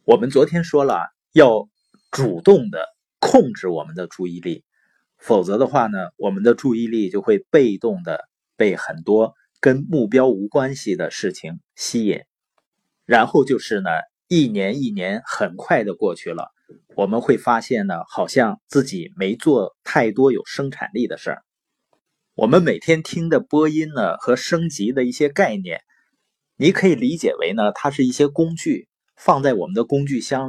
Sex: male